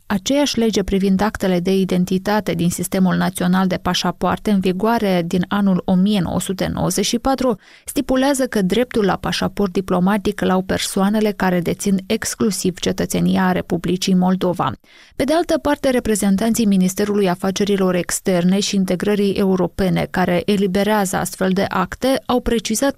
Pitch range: 185-215 Hz